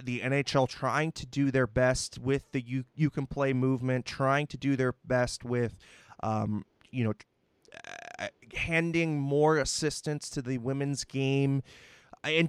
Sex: male